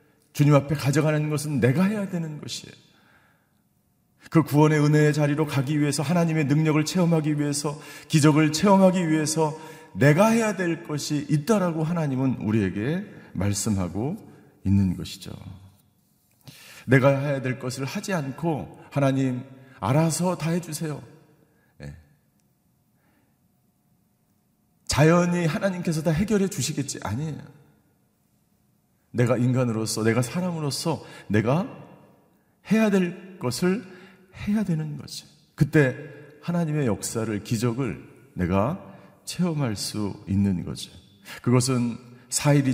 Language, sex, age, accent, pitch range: Korean, male, 40-59, native, 125-165 Hz